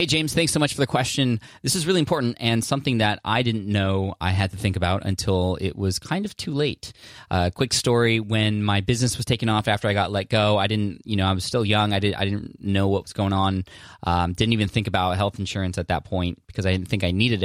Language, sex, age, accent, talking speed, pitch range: English, male, 20-39, American, 260 wpm, 95-115 Hz